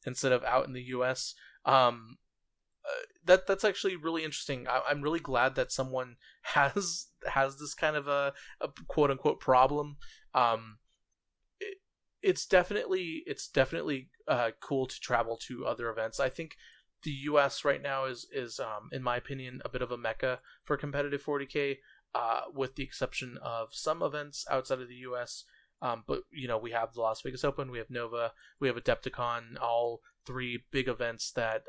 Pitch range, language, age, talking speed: 120-145 Hz, English, 20-39, 175 wpm